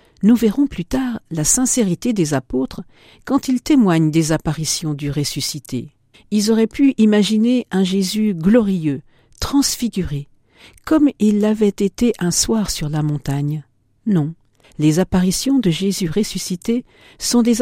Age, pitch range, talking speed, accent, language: 50-69, 150-220 Hz, 135 wpm, French, French